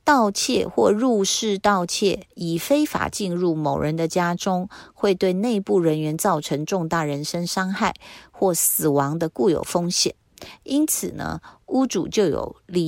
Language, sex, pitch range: Chinese, female, 155-200 Hz